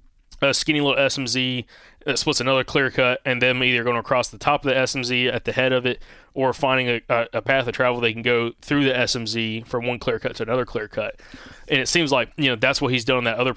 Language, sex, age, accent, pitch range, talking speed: English, male, 20-39, American, 115-135 Hz, 255 wpm